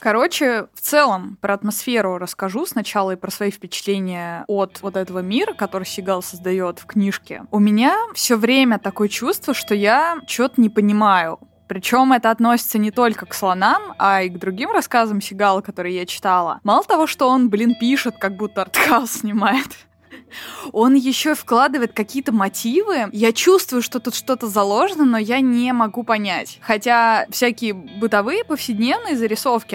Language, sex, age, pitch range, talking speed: Russian, female, 20-39, 205-260 Hz, 155 wpm